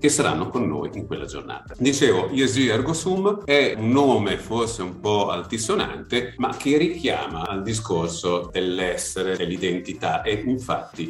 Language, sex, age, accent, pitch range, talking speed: Italian, male, 40-59, native, 90-135 Hz, 140 wpm